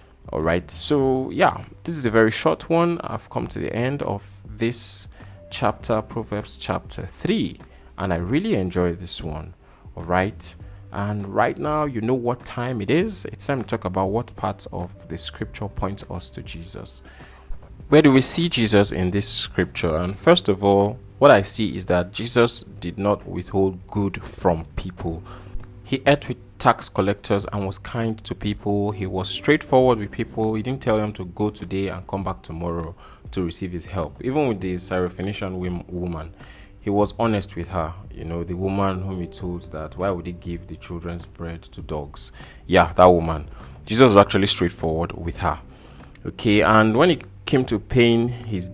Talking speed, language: 180 wpm, English